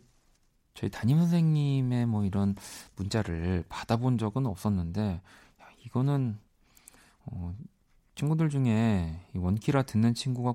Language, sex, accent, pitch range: Korean, male, native, 90-125 Hz